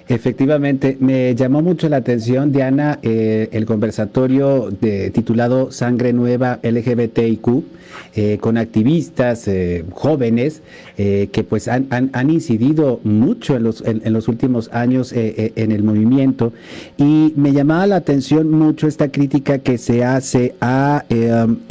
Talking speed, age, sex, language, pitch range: 145 wpm, 50-69, male, Spanish, 115-145 Hz